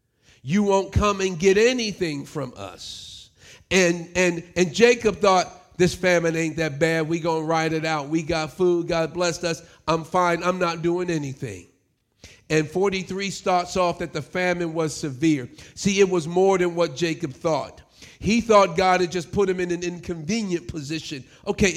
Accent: American